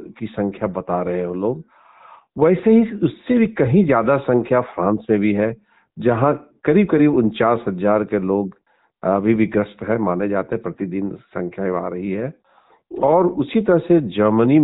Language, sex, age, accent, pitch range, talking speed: Hindi, male, 50-69, native, 105-155 Hz, 165 wpm